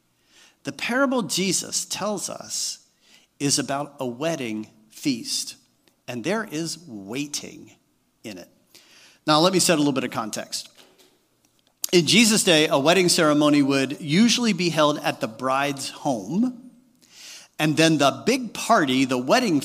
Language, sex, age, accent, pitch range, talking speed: English, male, 50-69, American, 145-230 Hz, 140 wpm